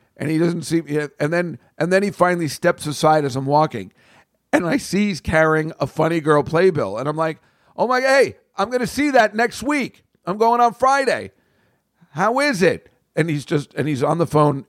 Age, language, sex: 50-69, English, male